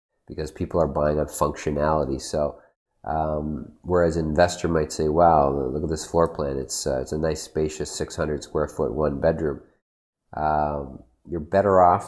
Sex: male